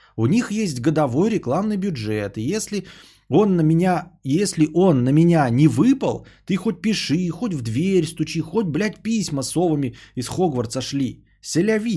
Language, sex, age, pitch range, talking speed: Bulgarian, male, 30-49, 125-180 Hz, 160 wpm